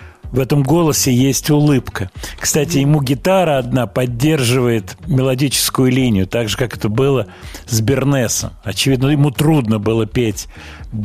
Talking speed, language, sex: 130 wpm, Russian, male